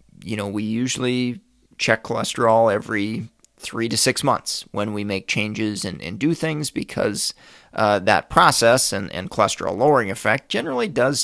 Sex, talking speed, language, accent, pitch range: male, 160 wpm, English, American, 105-130 Hz